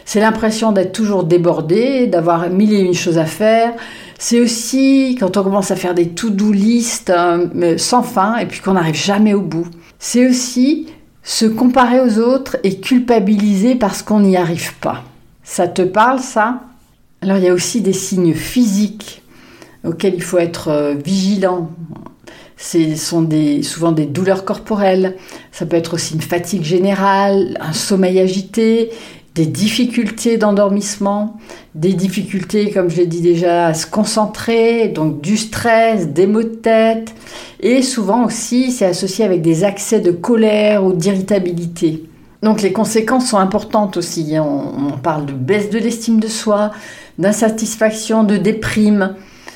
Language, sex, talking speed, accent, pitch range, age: French, female, 155 wpm, French, 175-225 Hz, 50-69